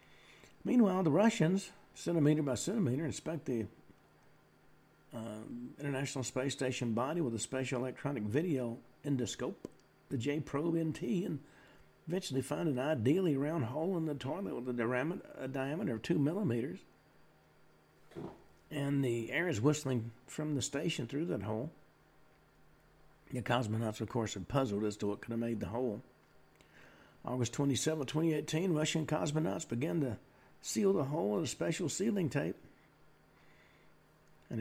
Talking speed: 140 wpm